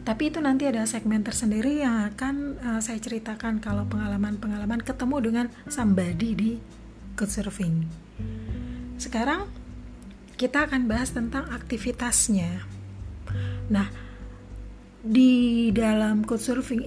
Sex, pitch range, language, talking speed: female, 195-250 Hz, Indonesian, 100 wpm